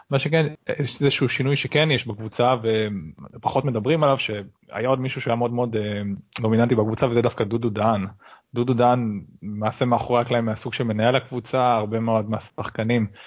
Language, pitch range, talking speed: Hebrew, 110-130 Hz, 160 wpm